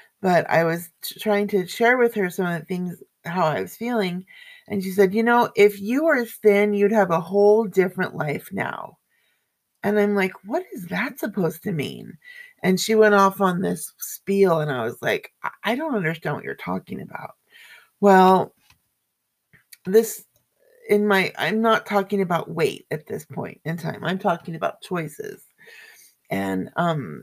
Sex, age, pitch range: female, 30-49, 175-215 Hz